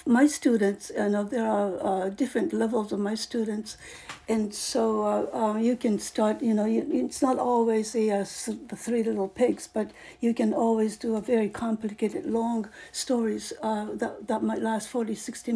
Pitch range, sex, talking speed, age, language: 215-250 Hz, female, 185 wpm, 60-79, English